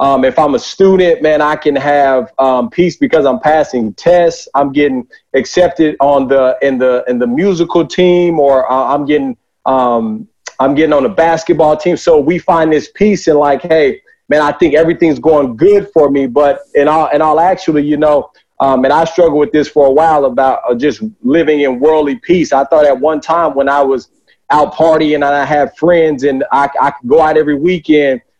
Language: English